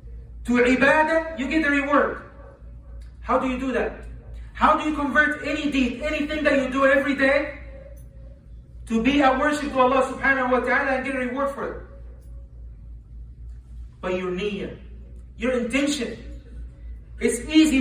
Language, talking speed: English, 150 wpm